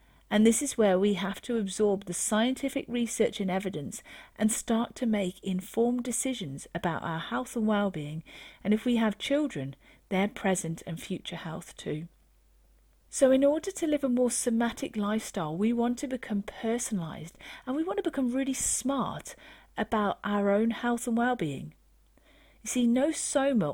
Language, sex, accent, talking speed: English, female, British, 165 wpm